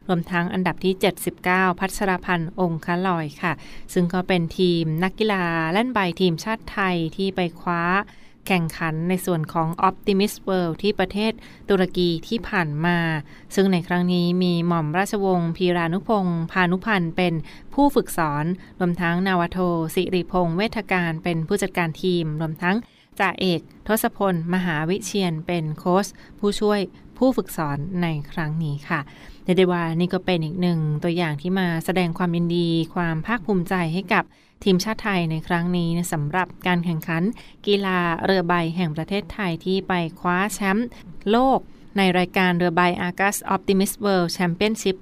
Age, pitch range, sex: 20-39, 170-195 Hz, female